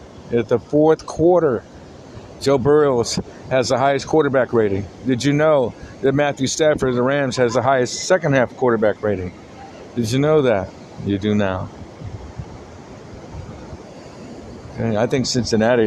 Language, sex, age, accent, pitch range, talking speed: English, male, 50-69, American, 100-120 Hz, 135 wpm